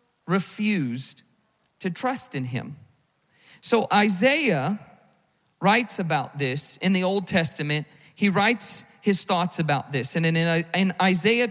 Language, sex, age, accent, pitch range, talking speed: English, male, 40-59, American, 155-205 Hz, 120 wpm